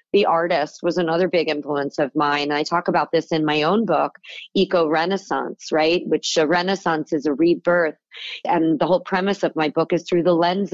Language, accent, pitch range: English, American, 165-195 Hz